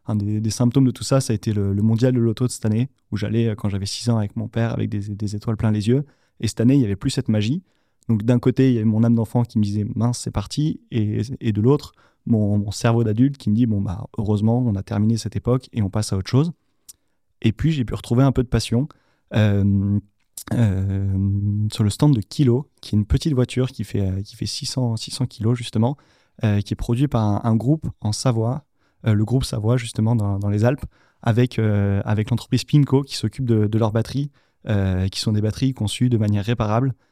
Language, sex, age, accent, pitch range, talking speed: French, male, 30-49, French, 105-125 Hz, 245 wpm